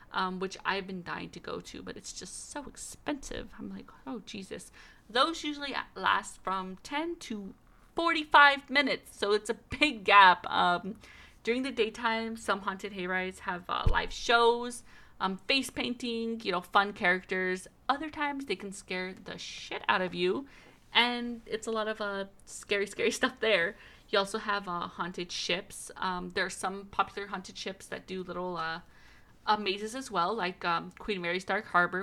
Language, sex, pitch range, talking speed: English, female, 185-240 Hz, 180 wpm